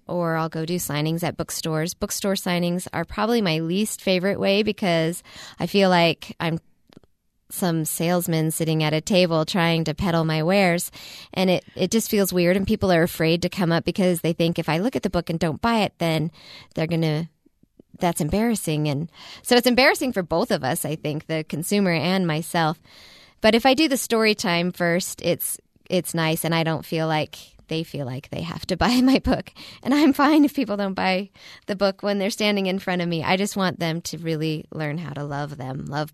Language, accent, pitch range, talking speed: English, American, 155-195 Hz, 215 wpm